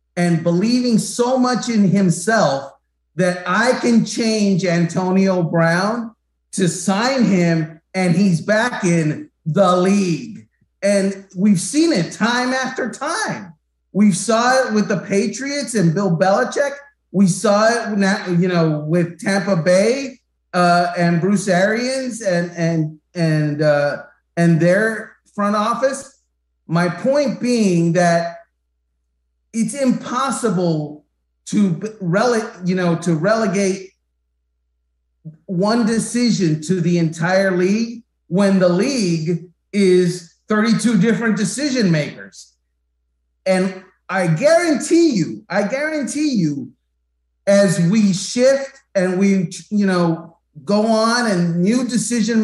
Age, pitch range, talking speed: 40-59, 170-225 Hz, 115 wpm